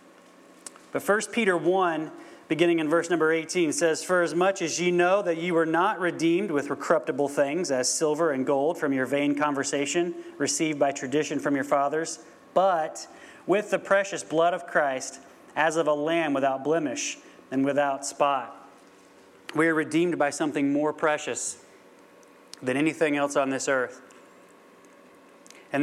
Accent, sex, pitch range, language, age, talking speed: American, male, 140-170 Hz, English, 30-49, 160 wpm